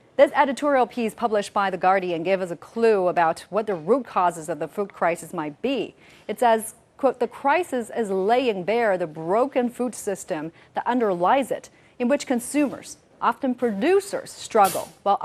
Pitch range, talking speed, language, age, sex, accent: 200-295 Hz, 175 wpm, English, 40-59, female, American